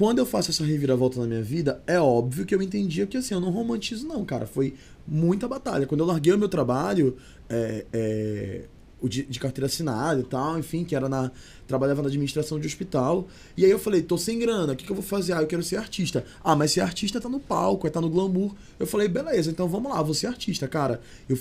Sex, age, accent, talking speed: male, 20-39, Brazilian, 240 wpm